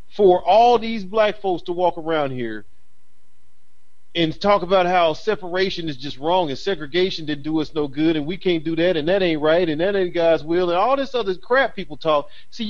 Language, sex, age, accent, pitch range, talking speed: English, male, 40-59, American, 160-225 Hz, 215 wpm